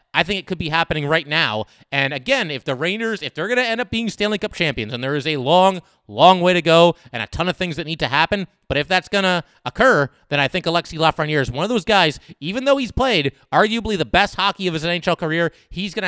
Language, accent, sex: English, American, male